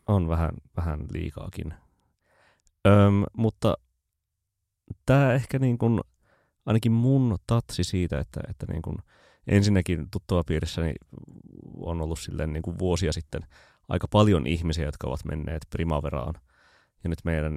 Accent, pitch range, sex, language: native, 80-100 Hz, male, Finnish